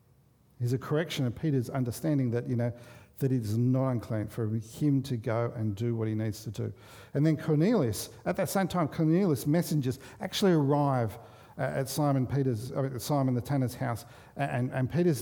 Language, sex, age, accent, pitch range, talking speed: English, male, 50-69, Australian, 120-145 Hz, 180 wpm